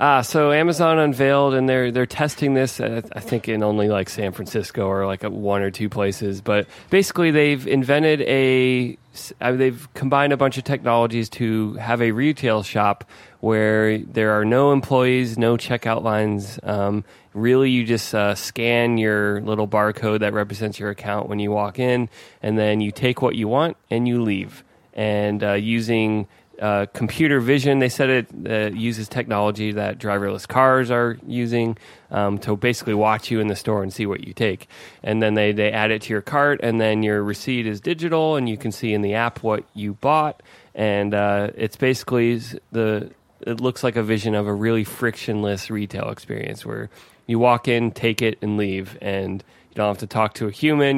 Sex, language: male, English